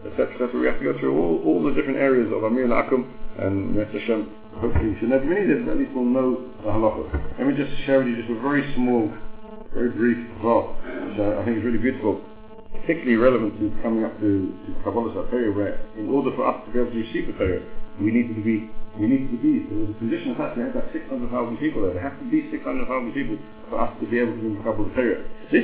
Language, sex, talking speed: English, male, 250 wpm